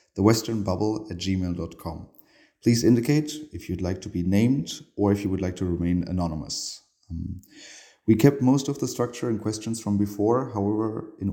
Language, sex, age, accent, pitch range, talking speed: English, male, 30-49, German, 95-110 Hz, 170 wpm